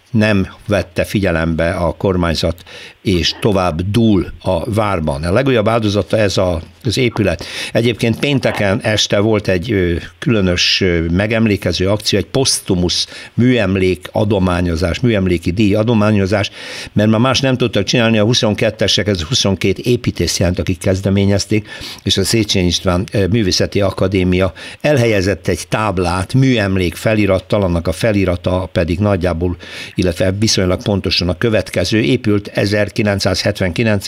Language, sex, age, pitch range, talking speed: Hungarian, male, 60-79, 90-110 Hz, 120 wpm